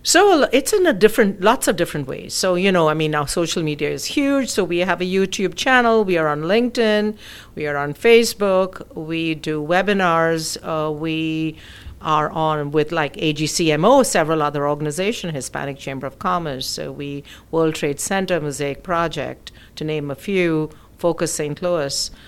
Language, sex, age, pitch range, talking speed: English, female, 50-69, 145-185 Hz, 170 wpm